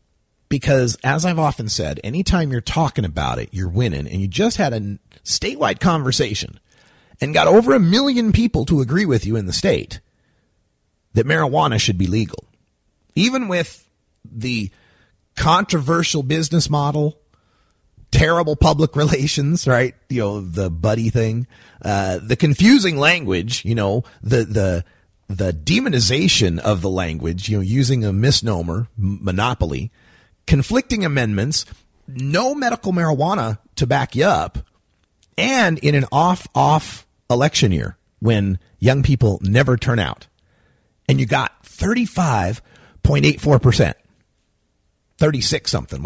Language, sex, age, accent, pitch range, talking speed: English, male, 40-59, American, 95-150 Hz, 125 wpm